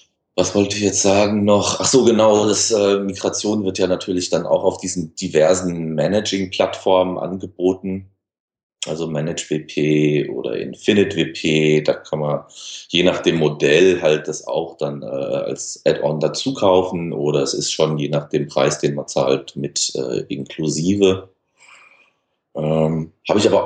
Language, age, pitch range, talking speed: German, 30-49, 80-100 Hz, 150 wpm